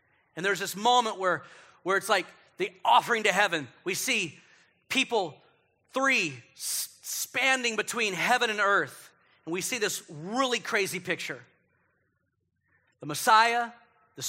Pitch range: 175-240 Hz